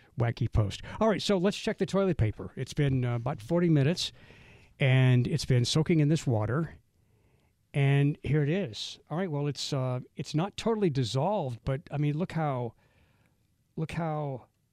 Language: English